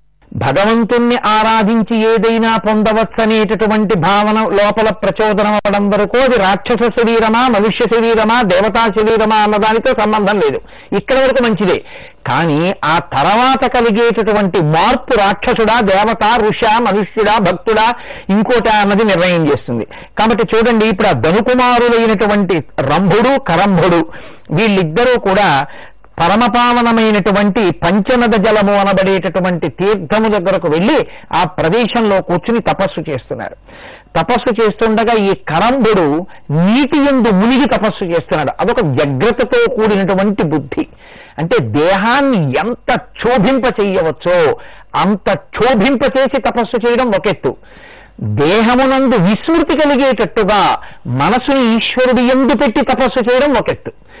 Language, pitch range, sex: Telugu, 200-240 Hz, male